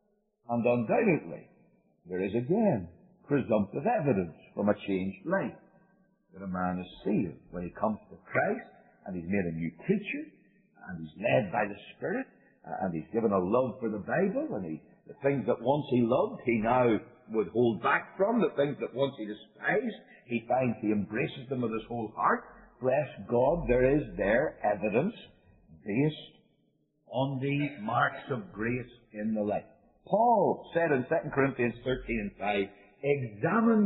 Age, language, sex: 50-69, English, male